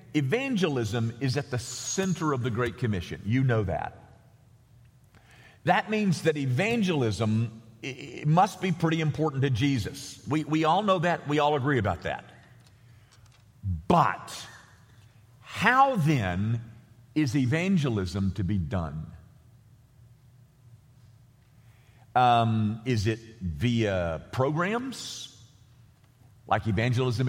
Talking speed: 105 wpm